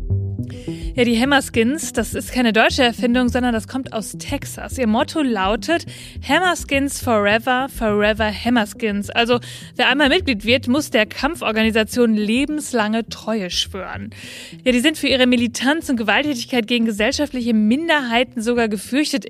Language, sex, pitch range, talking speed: German, female, 220-270 Hz, 135 wpm